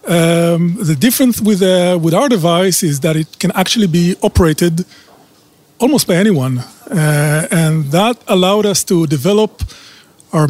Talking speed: 150 wpm